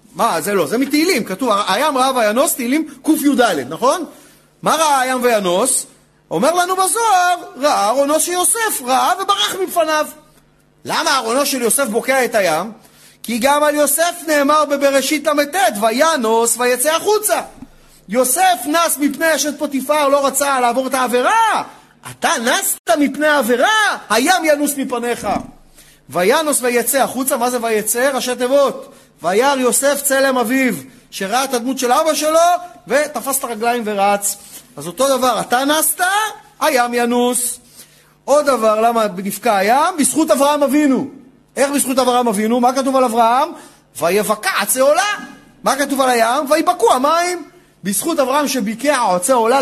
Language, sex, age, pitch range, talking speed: Hebrew, male, 40-59, 240-310 Hz, 140 wpm